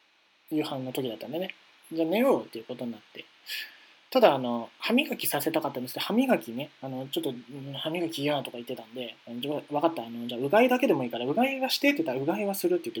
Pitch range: 125-185 Hz